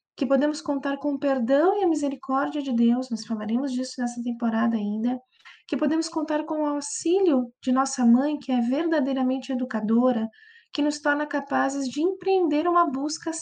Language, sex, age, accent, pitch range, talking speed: Portuguese, female, 20-39, Brazilian, 235-300 Hz, 170 wpm